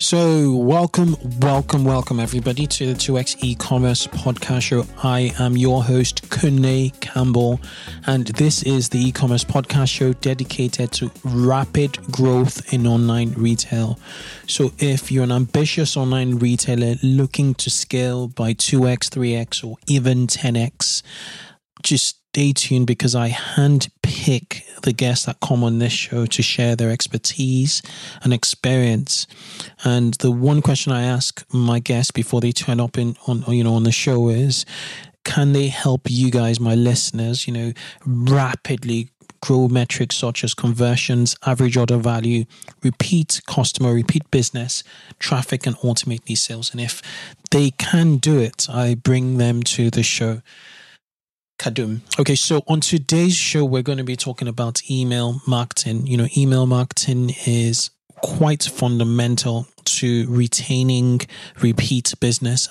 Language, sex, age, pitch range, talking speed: English, male, 20-39, 120-135 Hz, 145 wpm